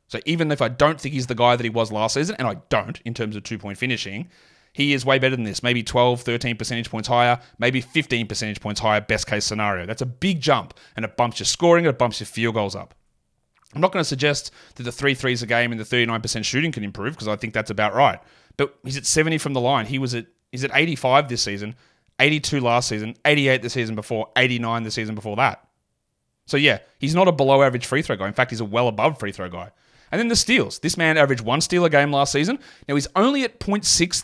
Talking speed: 240 wpm